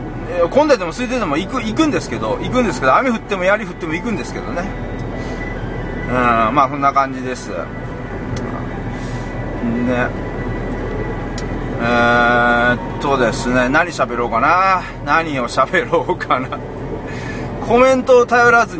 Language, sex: Japanese, male